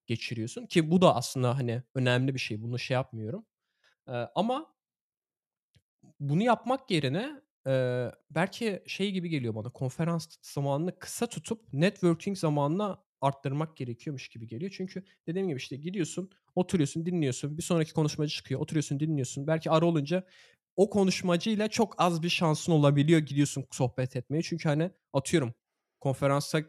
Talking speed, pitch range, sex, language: 140 wpm, 135-180 Hz, male, Turkish